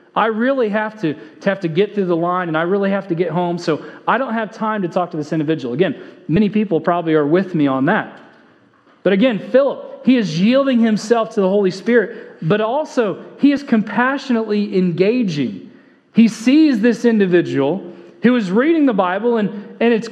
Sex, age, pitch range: male, 30-49, 185-250 Hz